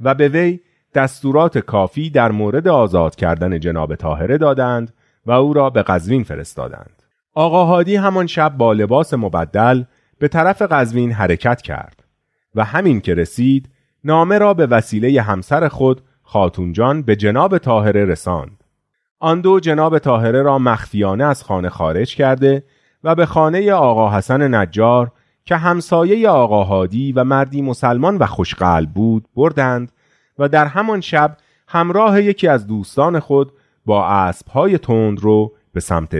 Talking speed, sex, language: 145 wpm, male, Persian